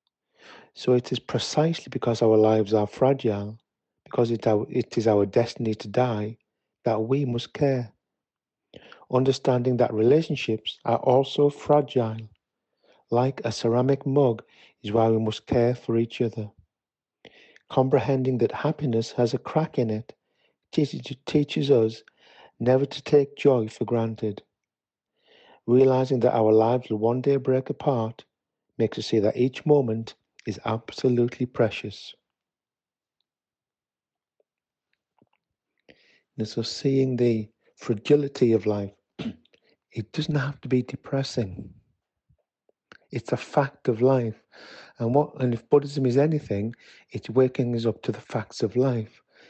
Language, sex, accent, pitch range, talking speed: English, male, British, 110-135 Hz, 130 wpm